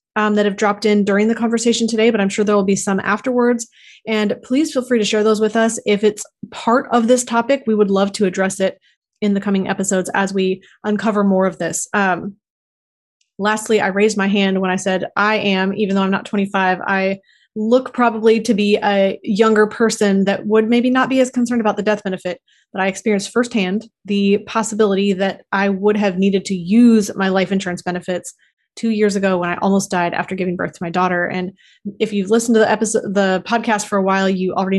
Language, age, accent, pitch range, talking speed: English, 30-49, American, 190-220 Hz, 220 wpm